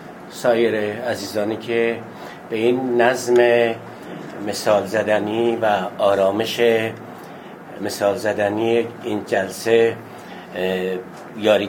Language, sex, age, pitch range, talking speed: Persian, male, 60-79, 105-120 Hz, 75 wpm